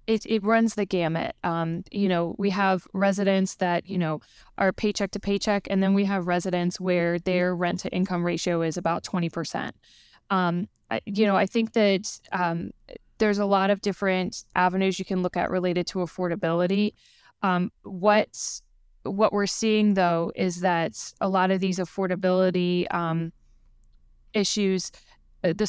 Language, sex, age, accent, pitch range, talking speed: English, female, 10-29, American, 170-195 Hz, 160 wpm